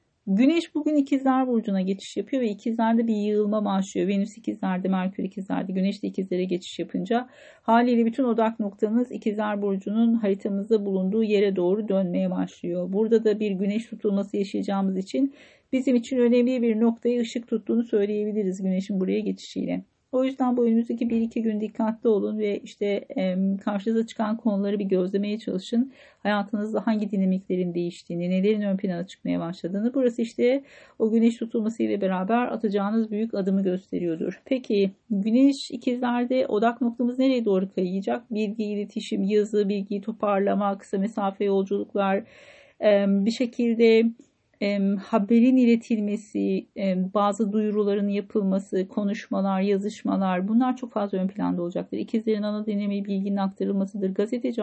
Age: 40-59